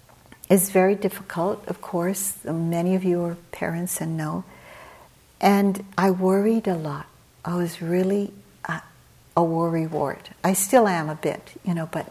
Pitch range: 170-195 Hz